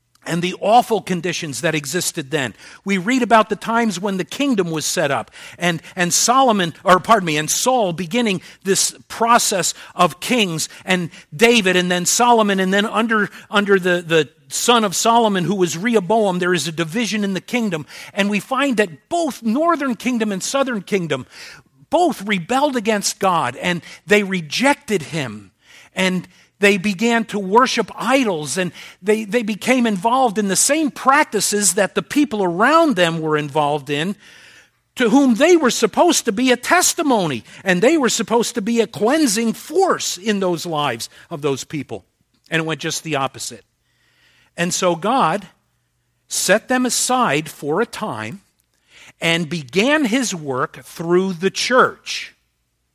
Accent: American